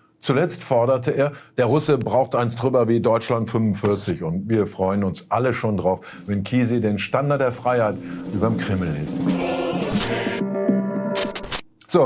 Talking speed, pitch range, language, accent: 140 wpm, 105-135 Hz, German, German